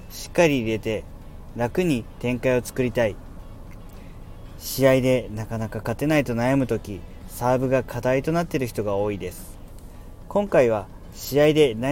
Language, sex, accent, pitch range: Japanese, male, native, 95-135 Hz